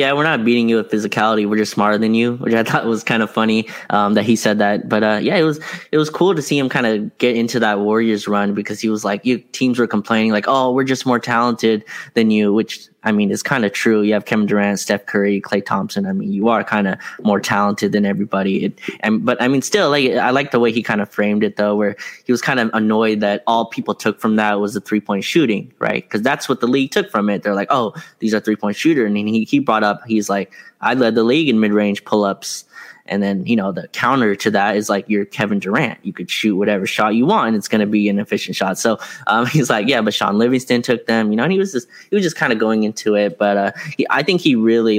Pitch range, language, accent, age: 105-120 Hz, English, American, 10-29